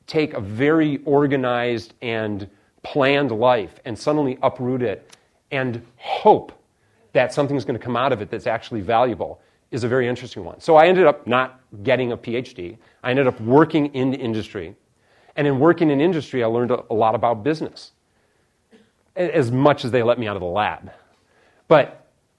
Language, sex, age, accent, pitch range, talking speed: English, male, 40-59, American, 115-145 Hz, 175 wpm